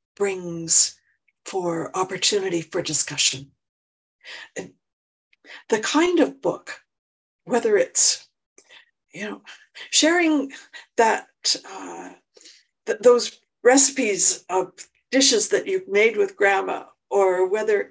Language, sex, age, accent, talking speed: English, female, 60-79, American, 90 wpm